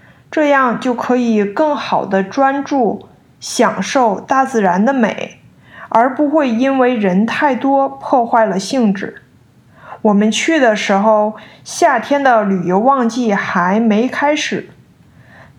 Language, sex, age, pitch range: Chinese, female, 20-39, 195-250 Hz